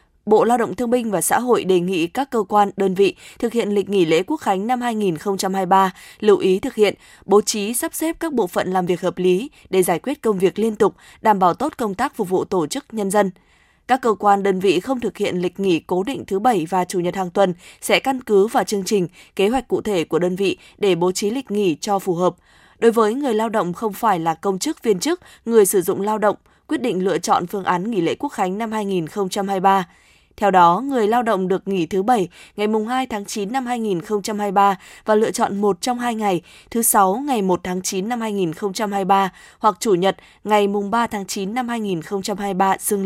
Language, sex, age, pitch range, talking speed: Vietnamese, female, 20-39, 185-225 Hz, 235 wpm